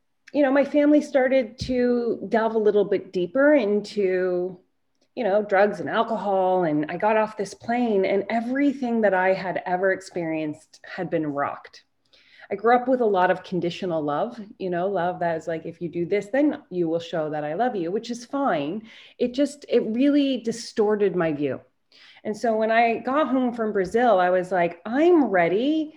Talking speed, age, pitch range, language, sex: 190 wpm, 30-49, 175-225 Hz, English, female